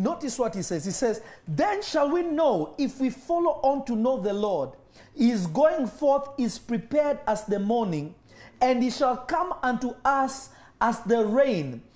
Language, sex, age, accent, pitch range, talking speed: English, male, 40-59, South African, 175-270 Hz, 175 wpm